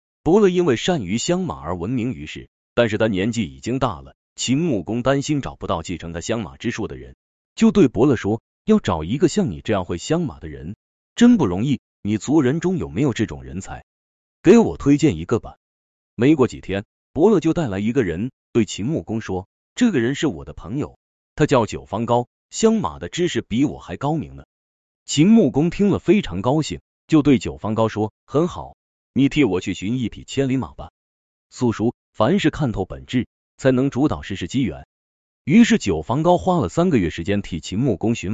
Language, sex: Chinese, male